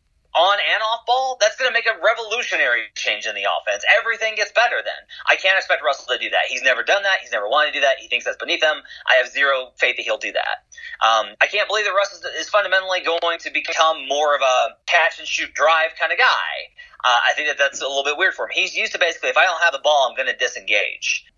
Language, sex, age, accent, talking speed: English, male, 30-49, American, 255 wpm